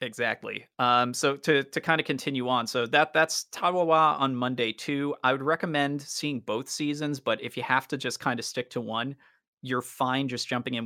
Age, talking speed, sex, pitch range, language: 30-49, 210 wpm, male, 115-150 Hz, English